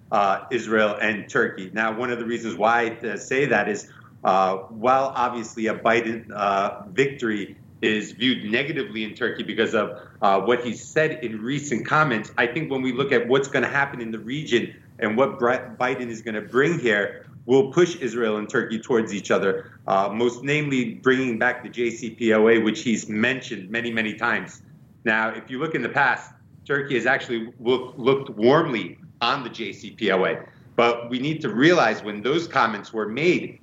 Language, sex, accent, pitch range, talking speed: English, male, American, 110-130 Hz, 185 wpm